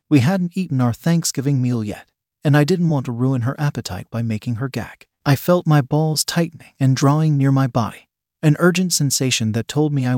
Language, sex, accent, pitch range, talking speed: English, male, American, 120-155 Hz, 210 wpm